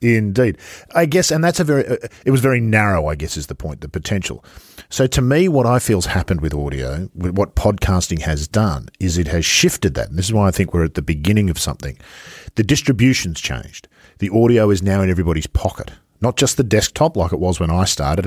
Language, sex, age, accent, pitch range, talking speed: English, male, 50-69, Australian, 80-110 Hz, 230 wpm